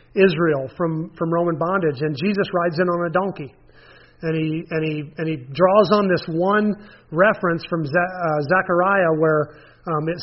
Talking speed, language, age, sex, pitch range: 170 wpm, English, 30-49, male, 160-195 Hz